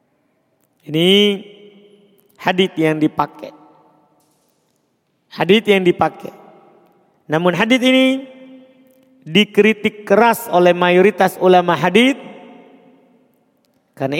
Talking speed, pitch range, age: 70 wpm, 205-255 Hz, 40-59